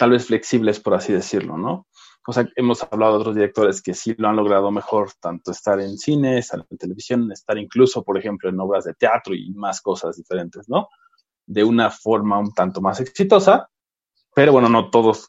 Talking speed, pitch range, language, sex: 195 wpm, 100-125 Hz, Spanish, male